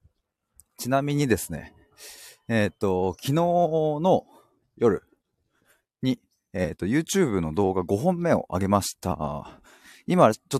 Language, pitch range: Japanese, 90-130 Hz